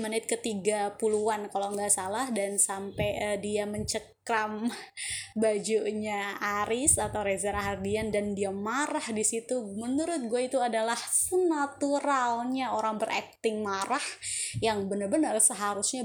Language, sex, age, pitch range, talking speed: Indonesian, female, 20-39, 205-255 Hz, 120 wpm